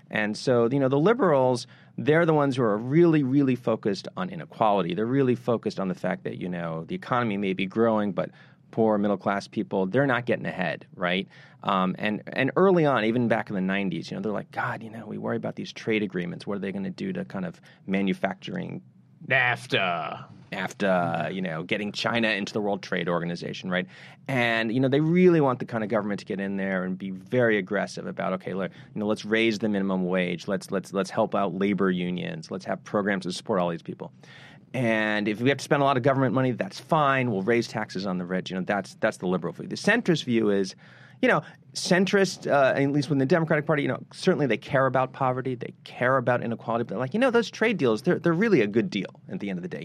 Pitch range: 105-150 Hz